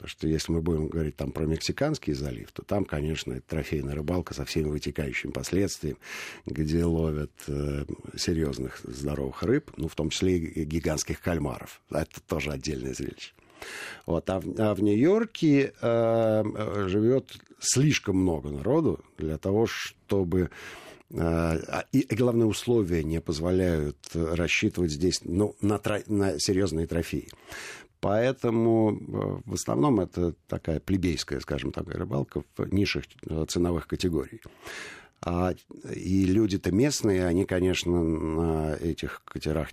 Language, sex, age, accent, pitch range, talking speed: Russian, male, 50-69, native, 80-105 Hz, 130 wpm